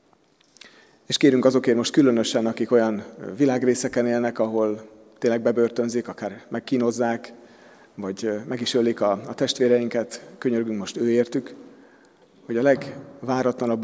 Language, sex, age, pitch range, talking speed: Hungarian, male, 40-59, 110-125 Hz, 115 wpm